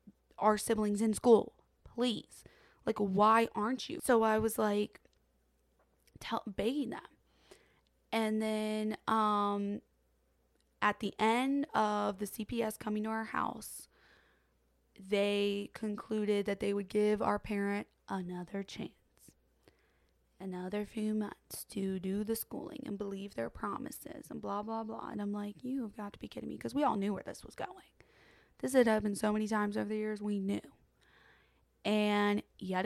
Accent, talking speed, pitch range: American, 155 wpm, 195-220 Hz